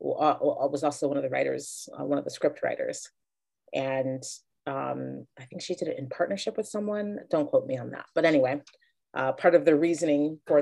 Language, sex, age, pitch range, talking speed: English, female, 30-49, 140-175 Hz, 210 wpm